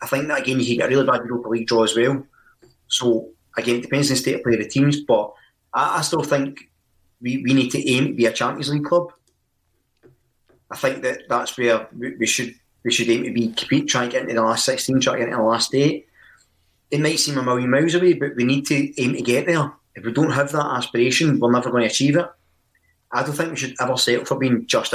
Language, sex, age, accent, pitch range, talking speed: English, male, 30-49, British, 115-140 Hz, 255 wpm